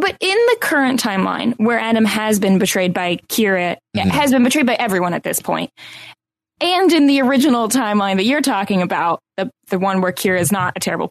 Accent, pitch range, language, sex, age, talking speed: American, 195-260 Hz, English, female, 10-29, 205 wpm